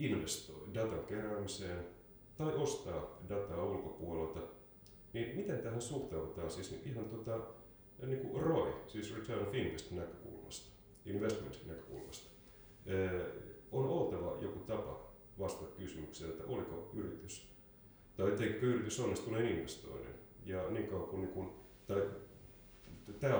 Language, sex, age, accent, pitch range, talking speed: Finnish, male, 30-49, native, 90-105 Hz, 100 wpm